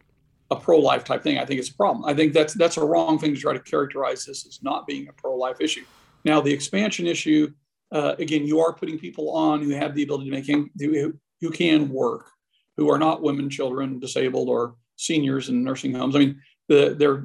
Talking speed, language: 225 wpm, English